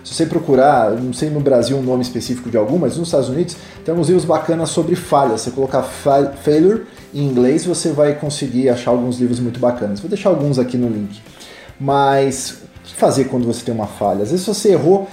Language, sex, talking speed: Portuguese, male, 220 wpm